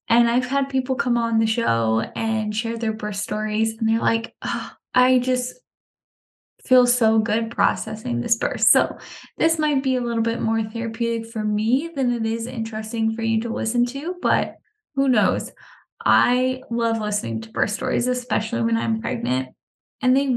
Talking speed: 175 wpm